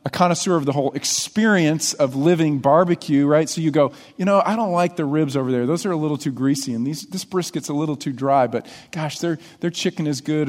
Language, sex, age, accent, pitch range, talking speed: English, male, 40-59, American, 155-210 Hz, 245 wpm